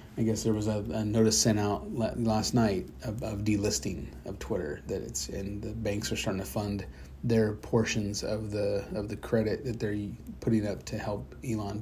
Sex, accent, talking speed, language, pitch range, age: male, American, 200 wpm, English, 100-115 Hz, 30-49